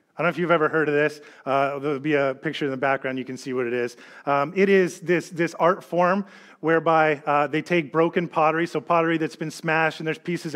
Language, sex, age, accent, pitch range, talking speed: English, male, 30-49, American, 150-180 Hz, 250 wpm